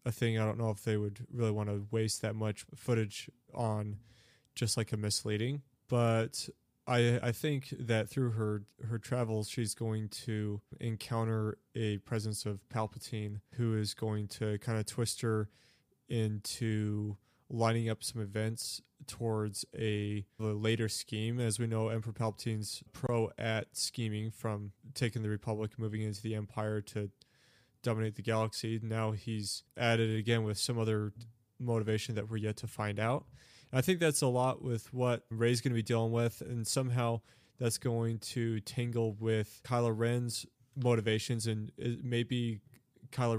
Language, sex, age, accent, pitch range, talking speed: English, male, 20-39, American, 110-120 Hz, 160 wpm